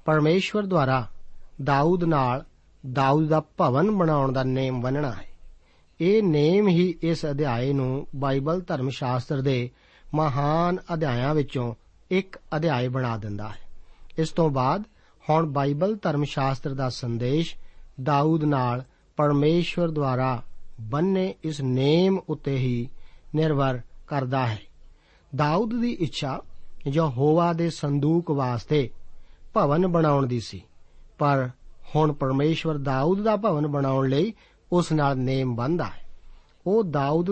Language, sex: Punjabi, male